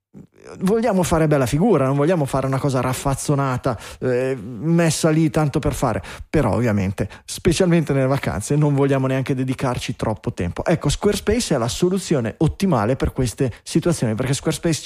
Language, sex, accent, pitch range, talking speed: Italian, male, native, 125-155 Hz, 155 wpm